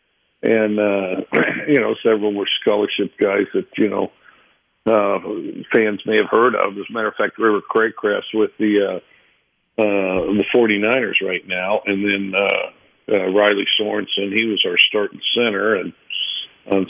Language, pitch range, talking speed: English, 100-120 Hz, 165 wpm